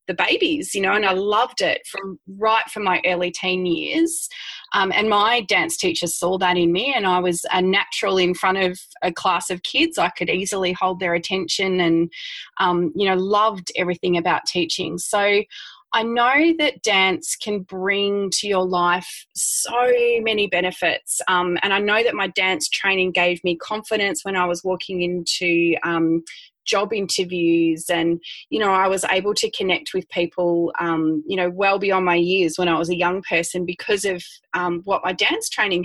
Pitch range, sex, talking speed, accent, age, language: 175-200 Hz, female, 185 wpm, Australian, 20-39, English